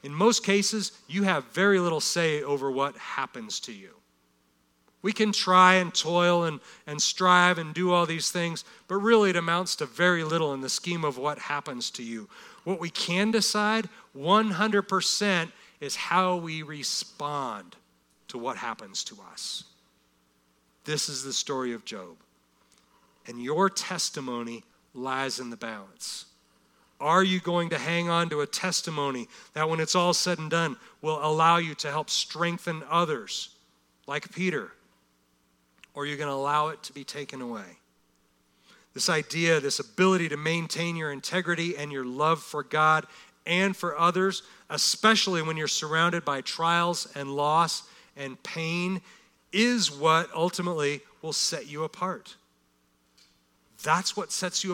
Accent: American